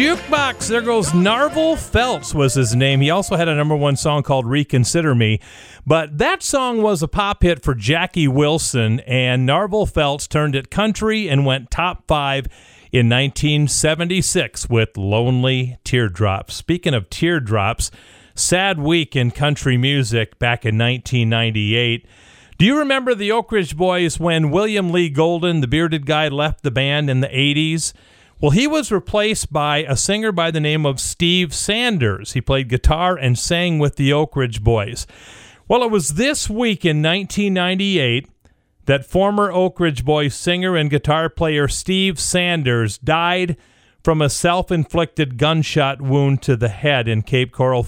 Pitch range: 125-180 Hz